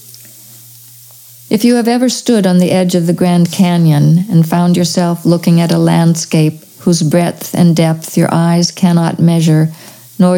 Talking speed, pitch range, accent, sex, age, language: 160 wpm, 155-180 Hz, American, female, 50-69, English